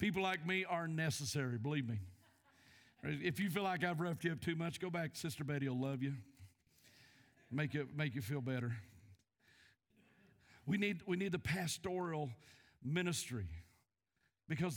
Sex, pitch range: male, 115-150 Hz